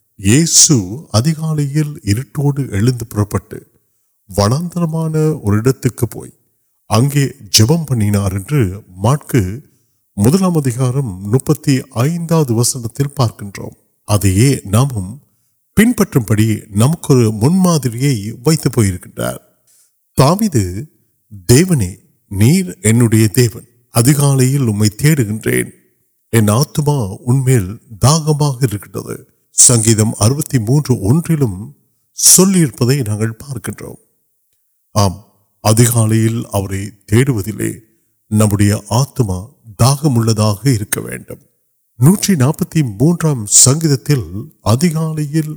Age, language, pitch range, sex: 50-69, Urdu, 105-145 Hz, male